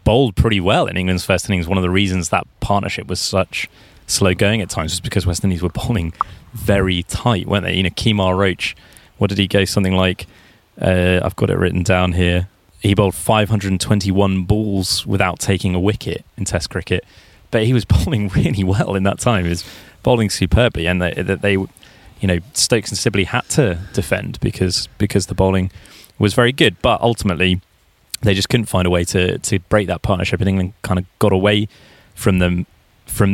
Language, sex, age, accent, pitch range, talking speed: English, male, 20-39, British, 90-105 Hz, 200 wpm